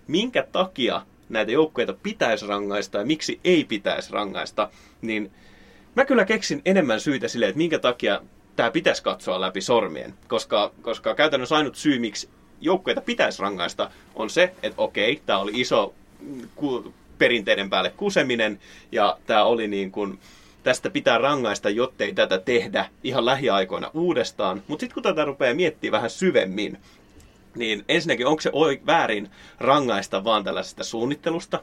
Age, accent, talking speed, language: 30-49, native, 135 wpm, Finnish